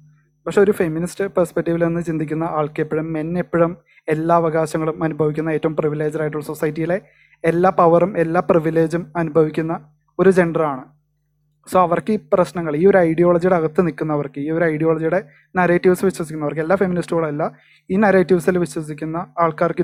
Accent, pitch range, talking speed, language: native, 150-175 Hz, 125 wpm, Malayalam